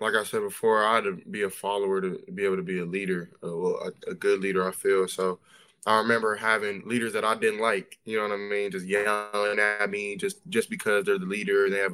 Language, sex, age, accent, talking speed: English, male, 20-39, American, 250 wpm